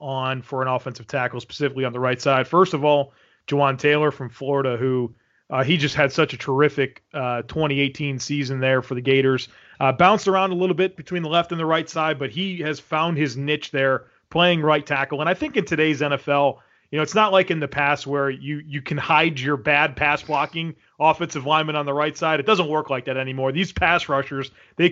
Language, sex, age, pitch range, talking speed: English, male, 30-49, 135-170 Hz, 225 wpm